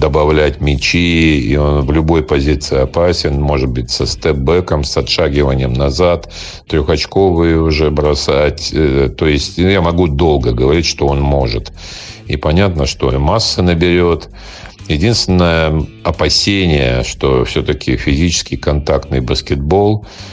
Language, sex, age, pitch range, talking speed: Russian, male, 50-69, 70-85 Hz, 115 wpm